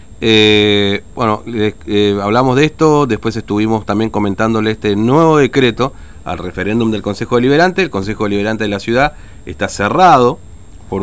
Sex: male